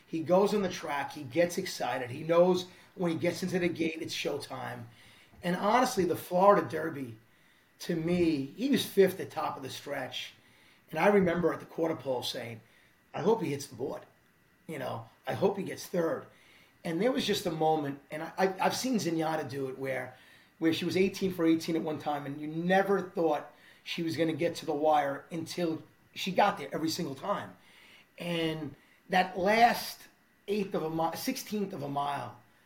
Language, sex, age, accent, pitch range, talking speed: English, male, 30-49, American, 150-190 Hz, 195 wpm